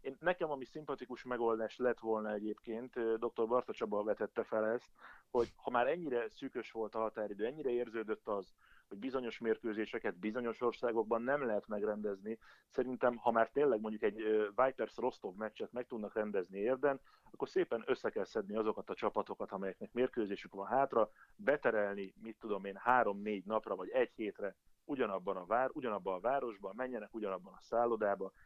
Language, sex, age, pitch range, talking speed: Hungarian, male, 30-49, 105-130 Hz, 160 wpm